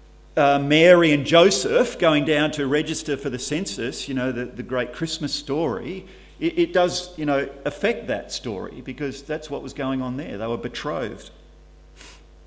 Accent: Australian